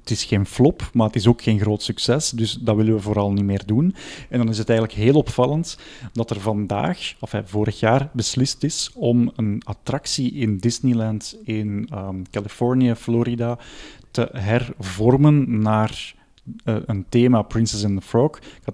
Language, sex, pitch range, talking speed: Dutch, male, 110-130 Hz, 175 wpm